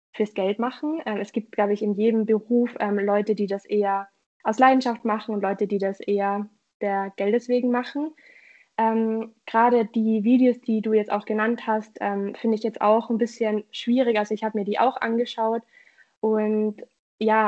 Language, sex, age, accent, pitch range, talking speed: German, female, 20-39, German, 210-235 Hz, 185 wpm